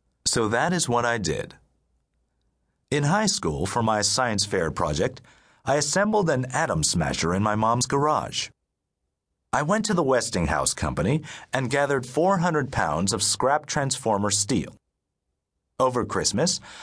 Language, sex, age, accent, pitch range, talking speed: English, male, 40-59, American, 95-145 Hz, 140 wpm